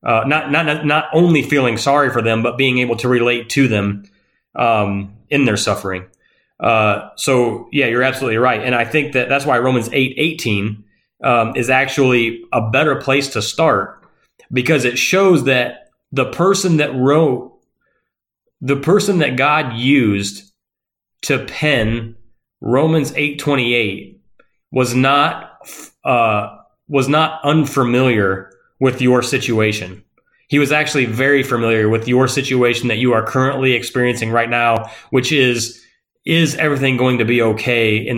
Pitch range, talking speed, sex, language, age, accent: 115-140 Hz, 150 wpm, male, English, 30-49, American